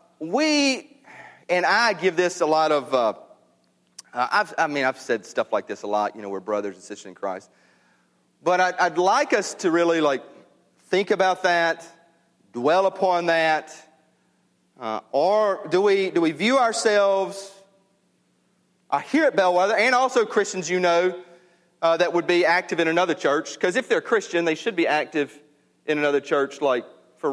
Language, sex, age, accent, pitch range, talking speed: English, male, 40-59, American, 130-185 Hz, 175 wpm